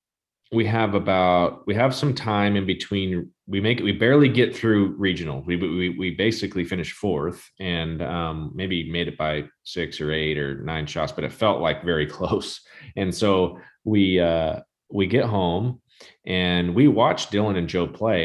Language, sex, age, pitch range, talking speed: English, male, 30-49, 90-110 Hz, 180 wpm